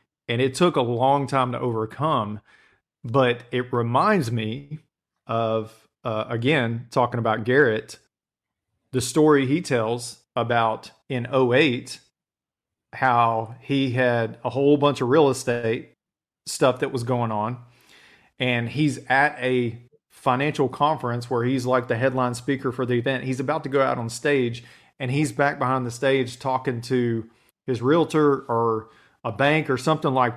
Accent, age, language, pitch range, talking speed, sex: American, 40-59, English, 115-140 Hz, 150 wpm, male